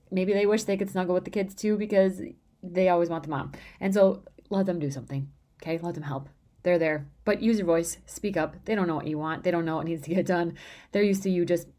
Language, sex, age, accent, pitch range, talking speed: English, female, 30-49, American, 160-190 Hz, 270 wpm